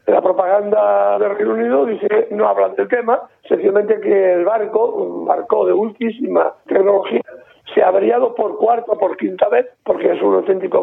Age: 60-79